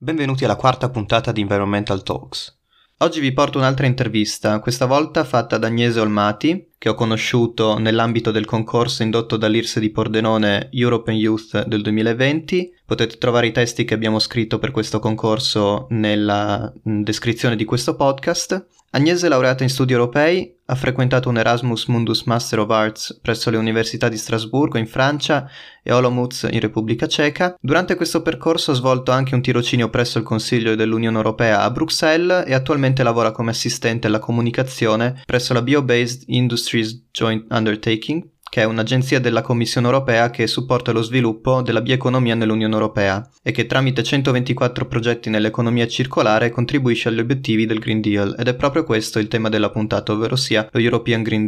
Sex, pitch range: male, 110-130 Hz